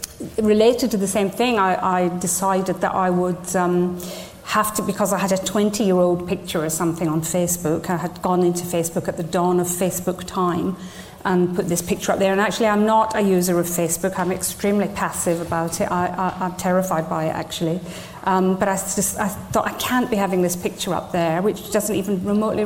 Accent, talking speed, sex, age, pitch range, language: British, 210 wpm, female, 40-59, 180-215 Hz, English